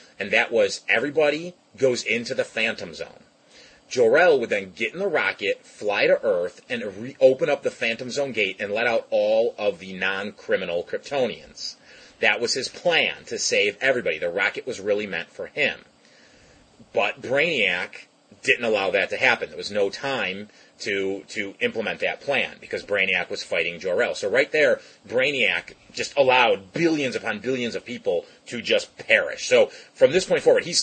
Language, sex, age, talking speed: English, male, 30-49, 175 wpm